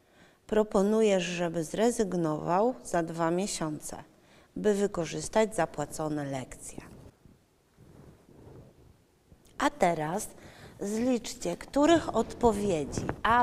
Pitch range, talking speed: 175-230 Hz, 70 wpm